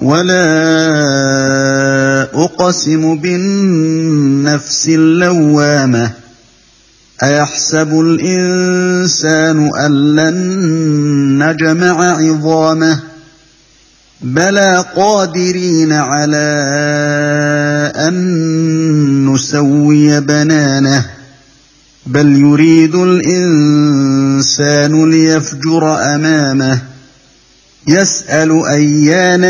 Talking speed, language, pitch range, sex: 45 wpm, English, 145-180 Hz, male